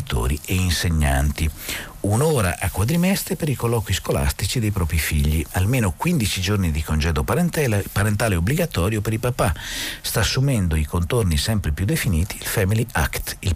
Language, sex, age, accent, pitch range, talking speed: Italian, male, 50-69, native, 75-100 Hz, 145 wpm